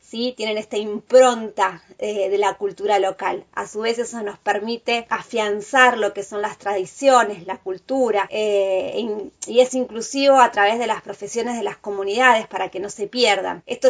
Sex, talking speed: female, 175 wpm